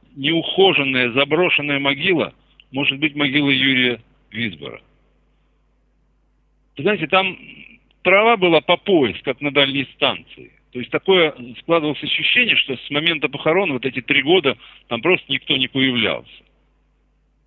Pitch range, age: 130-175 Hz, 60-79